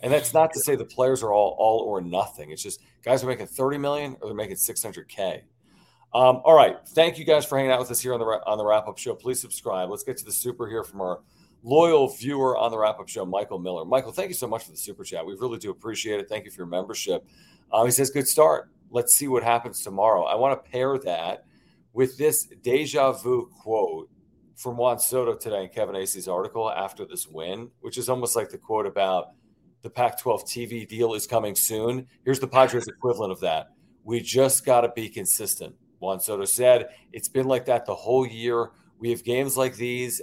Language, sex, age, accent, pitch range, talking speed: English, male, 40-59, American, 115-135 Hz, 225 wpm